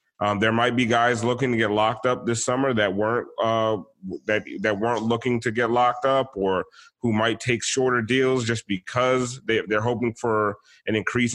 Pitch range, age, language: 115-140 Hz, 30-49, English